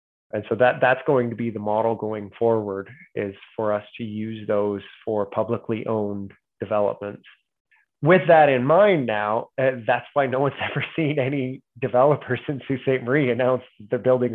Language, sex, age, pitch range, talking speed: English, male, 20-39, 115-135 Hz, 175 wpm